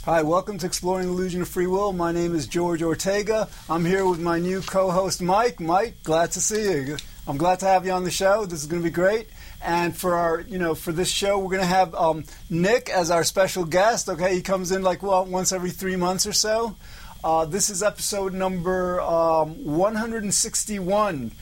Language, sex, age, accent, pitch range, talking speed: English, male, 50-69, American, 170-200 Hz, 215 wpm